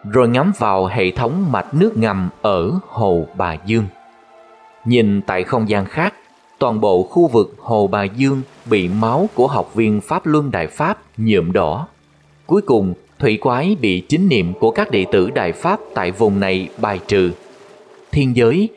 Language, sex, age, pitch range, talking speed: Vietnamese, male, 20-39, 100-145 Hz, 175 wpm